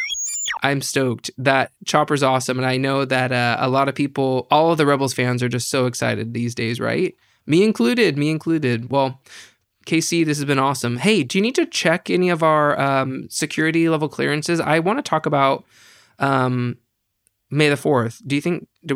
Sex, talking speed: male, 195 wpm